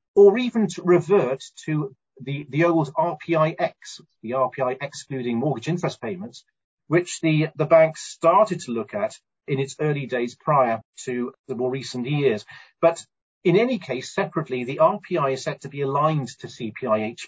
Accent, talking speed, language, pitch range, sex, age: British, 165 wpm, English, 125-170 Hz, male, 40-59